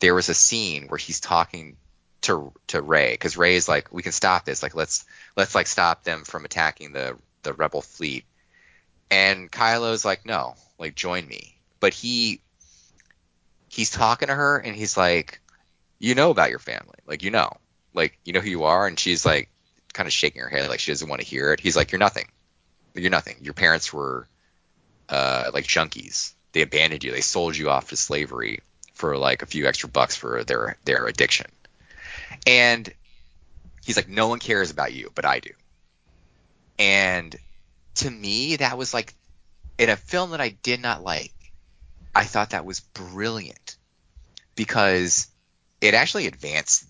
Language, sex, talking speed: English, male, 180 wpm